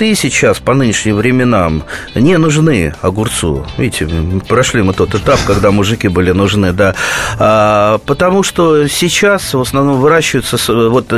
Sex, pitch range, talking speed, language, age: male, 110-145 Hz, 130 wpm, Russian, 30-49